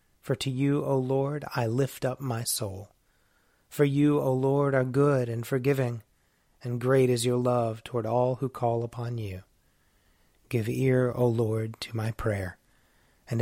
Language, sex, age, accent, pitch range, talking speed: English, male, 30-49, American, 110-130 Hz, 165 wpm